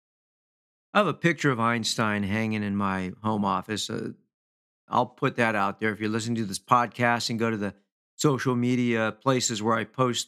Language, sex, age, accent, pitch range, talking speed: English, male, 50-69, American, 105-145 Hz, 195 wpm